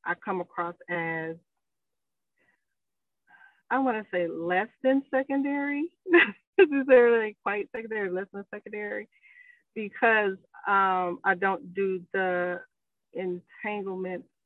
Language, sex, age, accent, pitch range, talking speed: English, female, 30-49, American, 175-195 Hz, 110 wpm